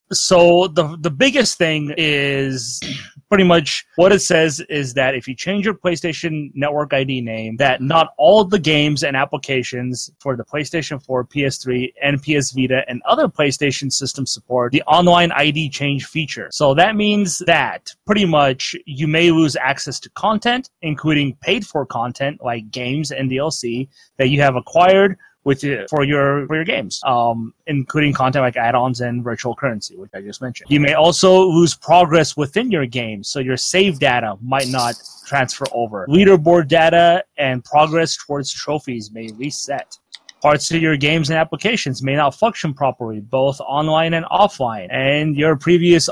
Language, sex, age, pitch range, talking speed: English, male, 30-49, 130-170 Hz, 170 wpm